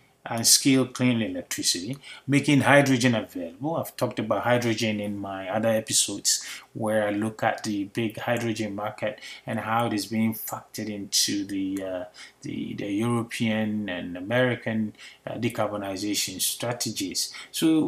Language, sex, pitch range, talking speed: English, male, 110-135 Hz, 140 wpm